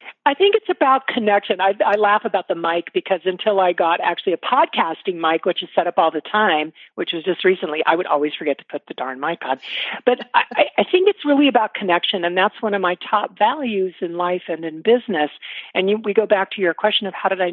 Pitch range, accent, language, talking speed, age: 175-230 Hz, American, English, 245 wpm, 50-69